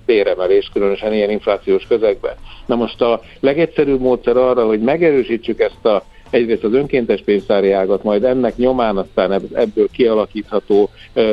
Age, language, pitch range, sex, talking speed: 60-79, Hungarian, 105-135 Hz, male, 150 wpm